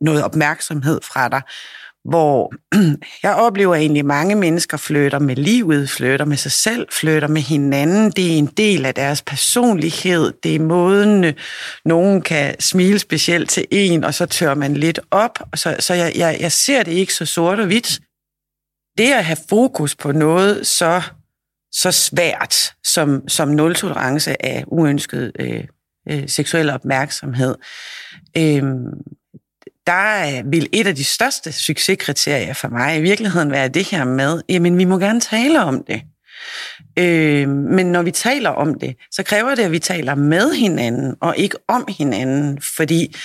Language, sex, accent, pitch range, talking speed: Danish, female, native, 145-190 Hz, 160 wpm